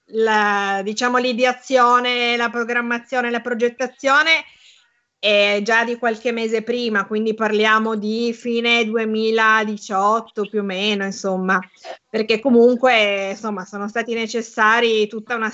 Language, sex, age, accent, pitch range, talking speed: Italian, female, 30-49, native, 210-245 Hz, 115 wpm